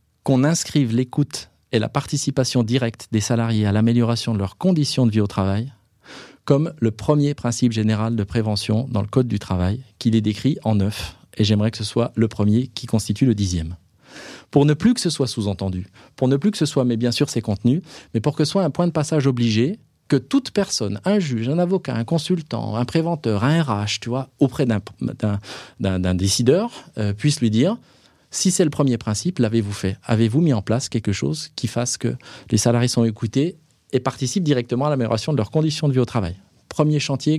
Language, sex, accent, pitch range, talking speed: French, male, French, 105-135 Hz, 210 wpm